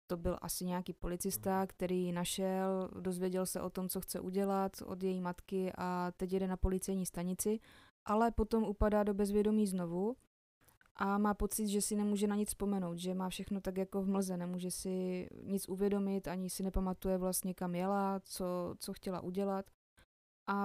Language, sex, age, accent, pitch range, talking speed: Czech, female, 20-39, native, 185-200 Hz, 175 wpm